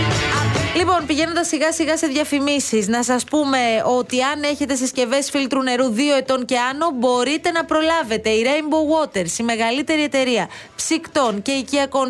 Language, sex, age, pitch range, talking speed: Greek, female, 30-49, 220-280 Hz, 155 wpm